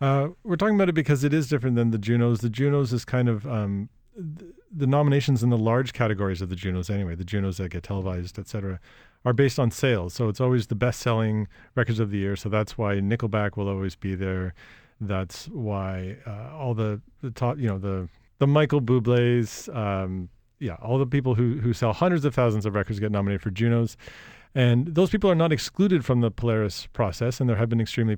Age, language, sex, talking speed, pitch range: 40-59, English, male, 220 wpm, 105-130 Hz